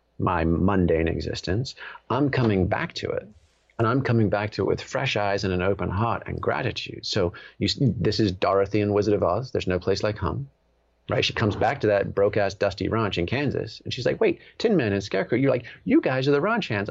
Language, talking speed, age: English, 235 wpm, 40-59